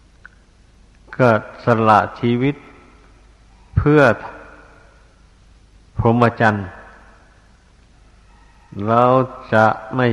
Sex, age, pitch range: male, 60-79, 100-120 Hz